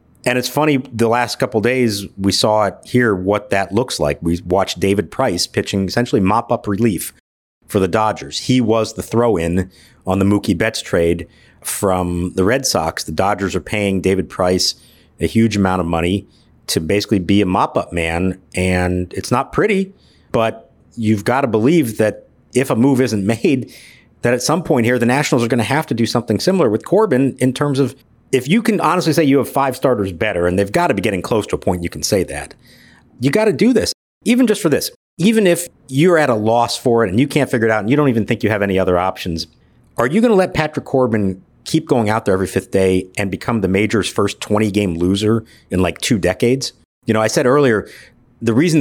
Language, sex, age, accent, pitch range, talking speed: English, male, 50-69, American, 95-130 Hz, 220 wpm